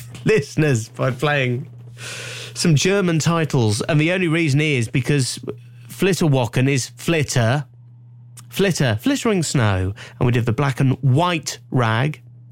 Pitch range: 120-155 Hz